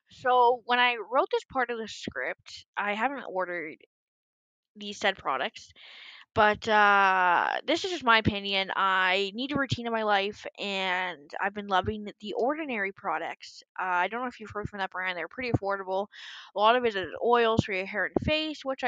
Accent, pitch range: American, 185-240 Hz